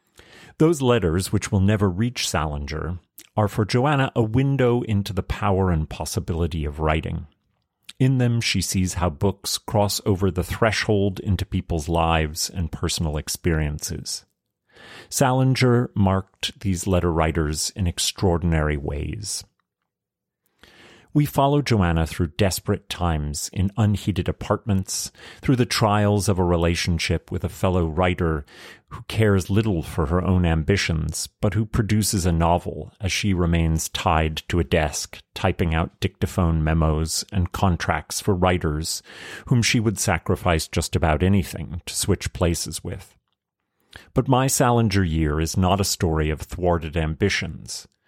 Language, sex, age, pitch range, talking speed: English, male, 40-59, 85-105 Hz, 140 wpm